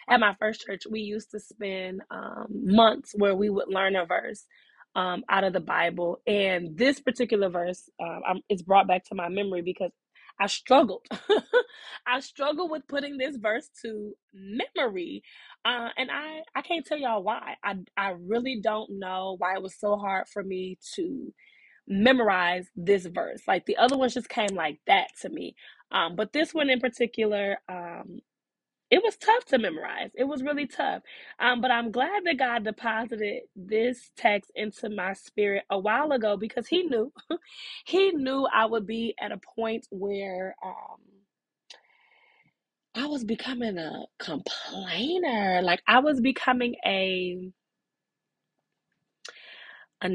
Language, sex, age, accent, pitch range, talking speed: English, female, 20-39, American, 195-270 Hz, 160 wpm